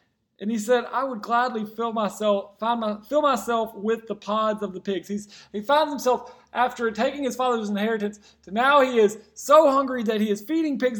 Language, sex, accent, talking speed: English, male, American, 200 wpm